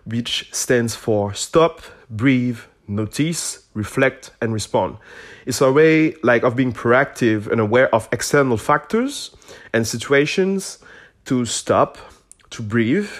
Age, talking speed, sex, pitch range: 20-39, 125 wpm, male, 105-145 Hz